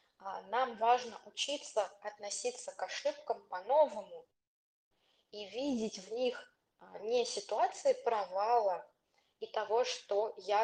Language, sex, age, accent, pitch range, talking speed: Russian, female, 20-39, native, 200-265 Hz, 105 wpm